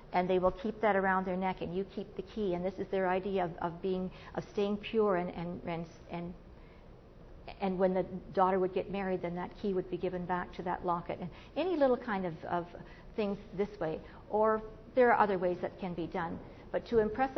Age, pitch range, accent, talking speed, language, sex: 50-69, 180-225 Hz, American, 230 wpm, English, female